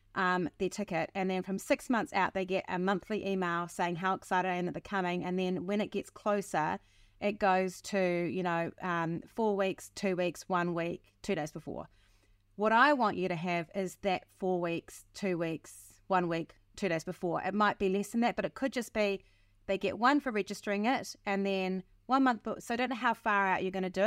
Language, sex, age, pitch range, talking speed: English, female, 30-49, 180-215 Hz, 230 wpm